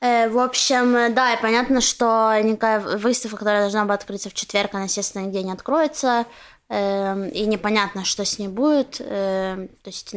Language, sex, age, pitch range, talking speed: Russian, female, 20-39, 205-240 Hz, 155 wpm